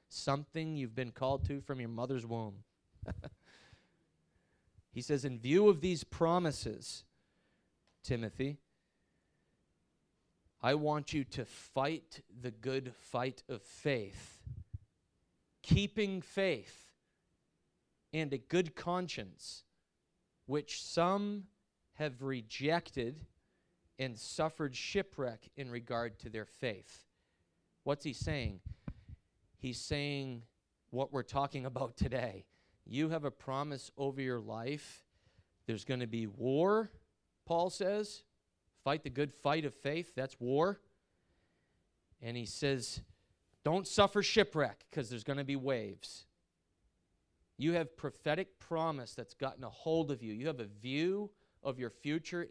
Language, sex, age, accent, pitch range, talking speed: English, male, 30-49, American, 110-150 Hz, 120 wpm